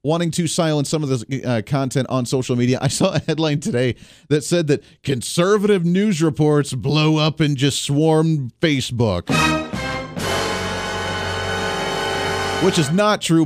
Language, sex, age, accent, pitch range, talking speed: English, male, 40-59, American, 120-165 Hz, 145 wpm